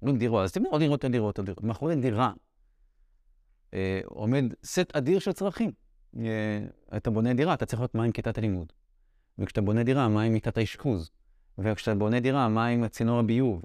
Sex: male